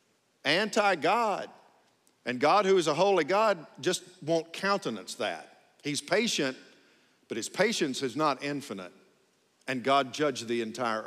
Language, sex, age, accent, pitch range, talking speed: English, male, 50-69, American, 135-195 Hz, 135 wpm